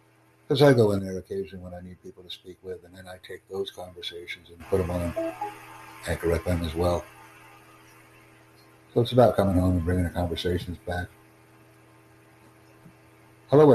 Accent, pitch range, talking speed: American, 90-110 Hz, 170 wpm